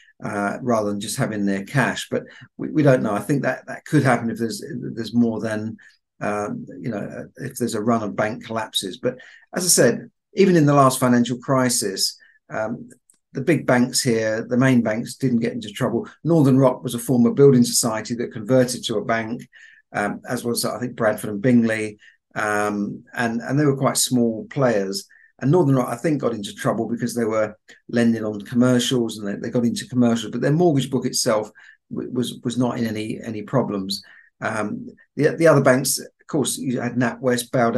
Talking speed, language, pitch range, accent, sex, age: 205 wpm, English, 115-130 Hz, British, male, 50-69